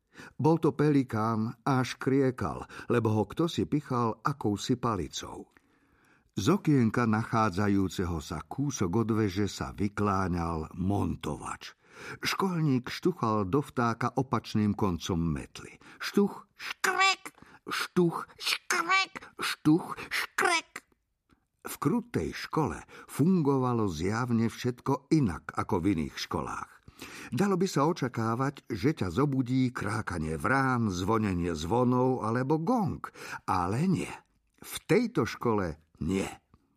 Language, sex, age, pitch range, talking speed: Slovak, male, 50-69, 105-145 Hz, 105 wpm